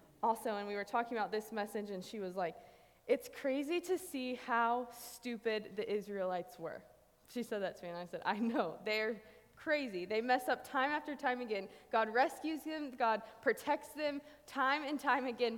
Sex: female